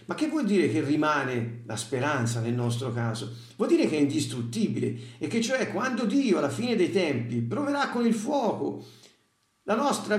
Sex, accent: male, native